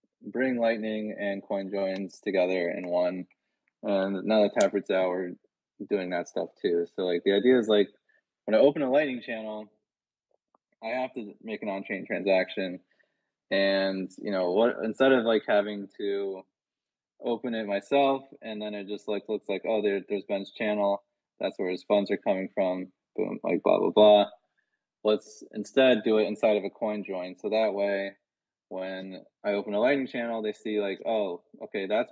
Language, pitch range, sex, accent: English, 95-110 Hz, male, American